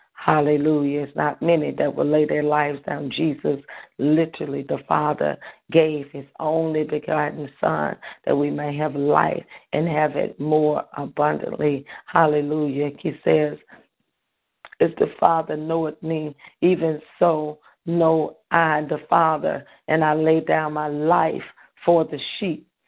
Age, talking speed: 40-59, 135 wpm